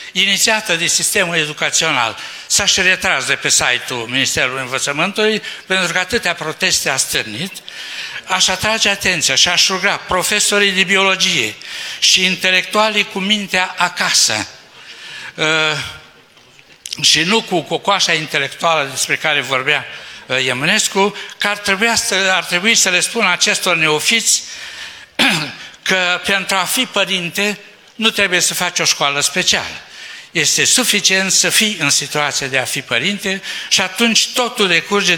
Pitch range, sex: 155-200 Hz, male